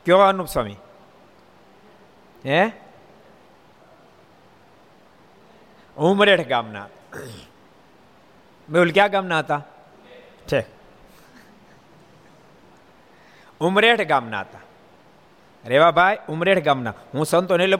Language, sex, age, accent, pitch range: Gujarati, male, 60-79, native, 155-195 Hz